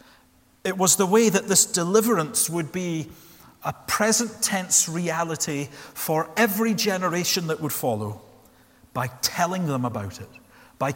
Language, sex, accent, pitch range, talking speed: English, male, British, 135-210 Hz, 135 wpm